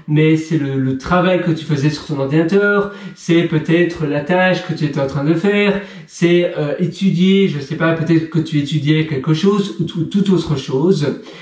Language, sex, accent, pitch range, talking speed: French, male, French, 150-180 Hz, 210 wpm